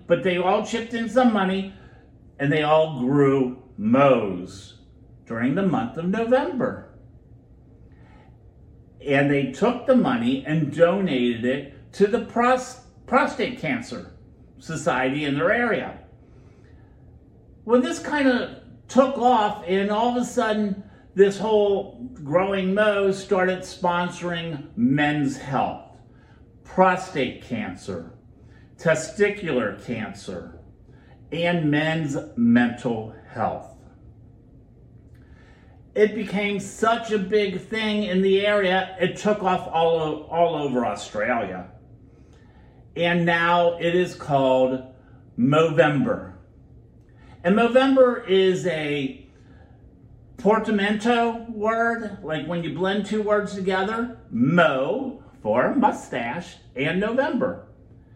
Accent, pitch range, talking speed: American, 150-215 Hz, 105 wpm